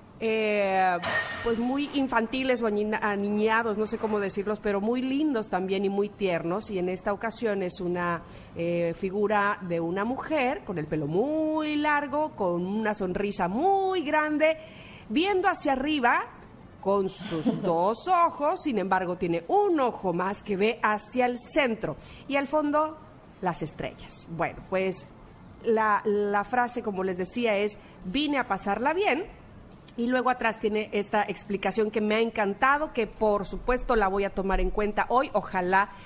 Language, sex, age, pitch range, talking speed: Spanish, female, 40-59, 195-275 Hz, 160 wpm